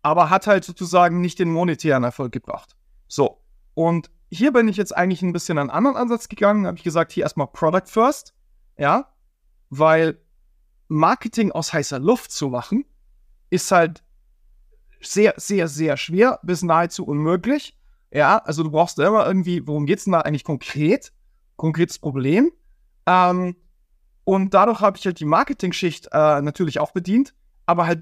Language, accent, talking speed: German, German, 165 wpm